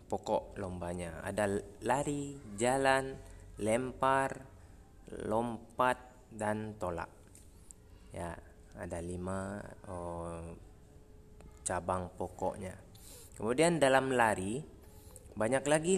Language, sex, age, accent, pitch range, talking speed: Indonesian, male, 20-39, native, 95-120 Hz, 75 wpm